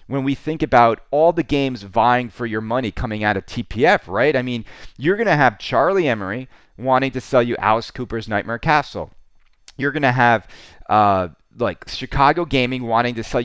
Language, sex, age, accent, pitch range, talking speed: English, male, 30-49, American, 115-140 Hz, 190 wpm